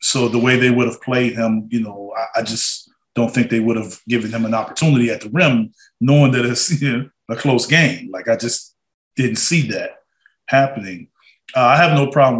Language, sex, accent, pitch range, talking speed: English, male, American, 110-130 Hz, 220 wpm